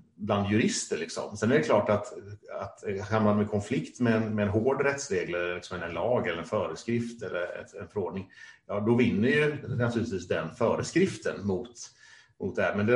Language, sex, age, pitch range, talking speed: Swedish, male, 30-49, 105-125 Hz, 185 wpm